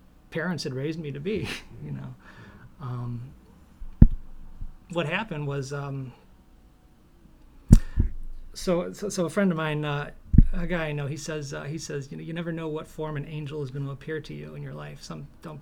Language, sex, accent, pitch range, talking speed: English, male, American, 135-165 Hz, 190 wpm